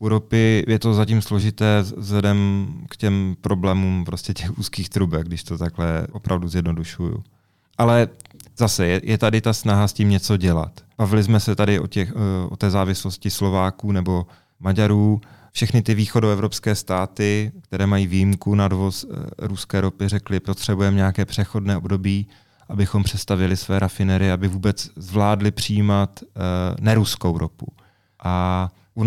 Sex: male